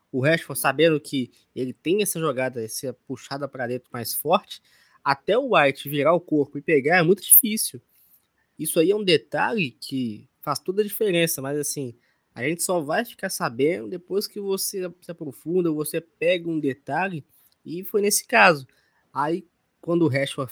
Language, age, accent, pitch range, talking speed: Portuguese, 20-39, Brazilian, 135-170 Hz, 175 wpm